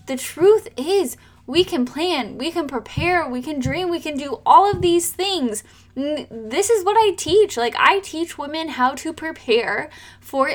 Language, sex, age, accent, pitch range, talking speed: English, female, 10-29, American, 250-340 Hz, 180 wpm